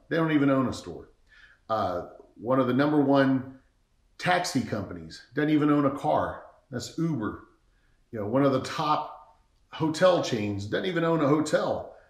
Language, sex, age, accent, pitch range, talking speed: English, male, 40-59, American, 115-145 Hz, 170 wpm